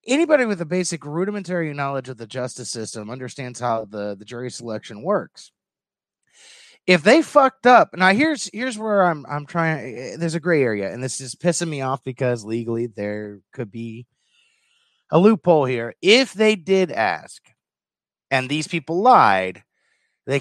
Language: English